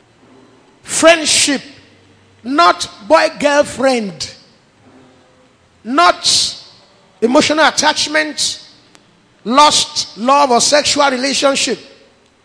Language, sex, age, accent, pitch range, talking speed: English, male, 50-69, Nigerian, 260-330 Hz, 55 wpm